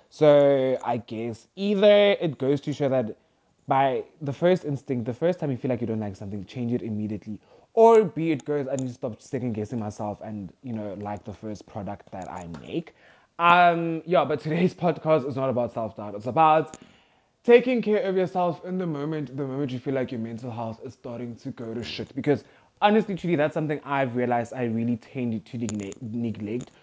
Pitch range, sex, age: 115-165 Hz, male, 20-39